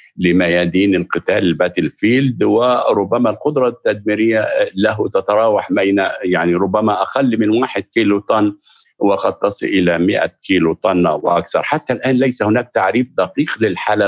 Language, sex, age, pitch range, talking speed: Arabic, male, 50-69, 95-125 Hz, 125 wpm